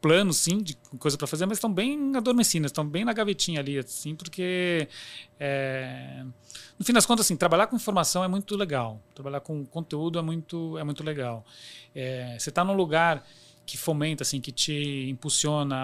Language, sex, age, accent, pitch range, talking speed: Portuguese, male, 40-59, Brazilian, 140-190 Hz, 180 wpm